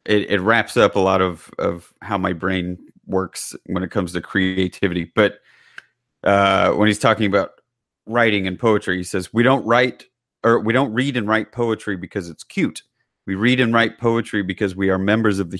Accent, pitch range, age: American, 95-120 Hz, 30-49